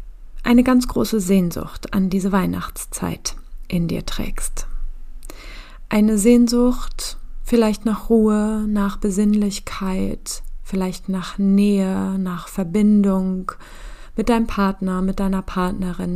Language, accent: German, German